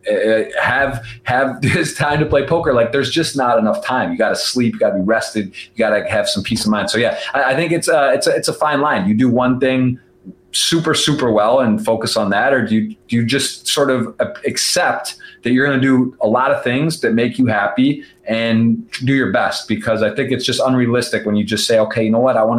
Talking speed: 245 wpm